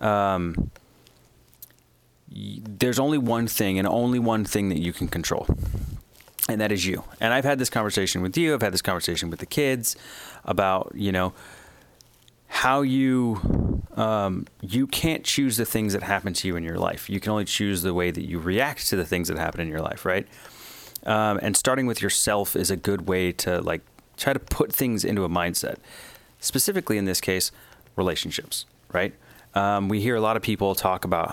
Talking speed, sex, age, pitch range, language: 190 wpm, male, 30-49, 90-115 Hz, English